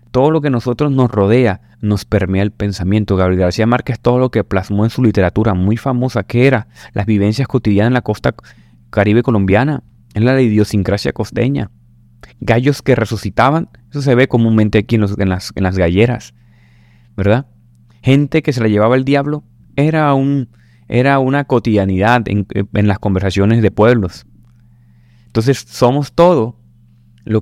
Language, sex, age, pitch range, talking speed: Spanish, male, 30-49, 100-120 Hz, 160 wpm